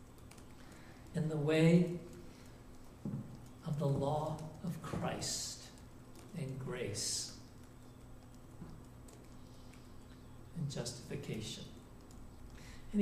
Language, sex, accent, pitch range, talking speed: English, male, American, 155-210 Hz, 60 wpm